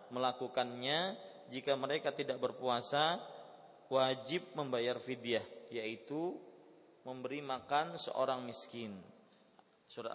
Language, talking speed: Malay, 85 wpm